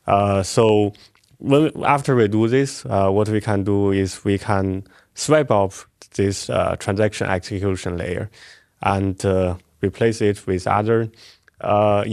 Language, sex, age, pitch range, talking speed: English, male, 20-39, 100-115 Hz, 140 wpm